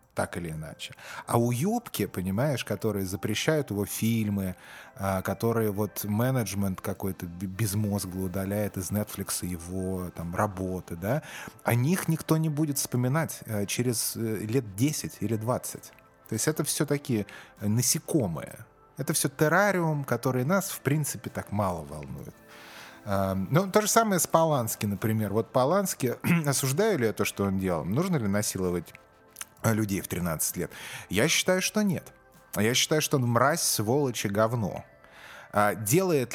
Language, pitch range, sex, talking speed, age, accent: Russian, 100-140 Hz, male, 140 wpm, 30-49, native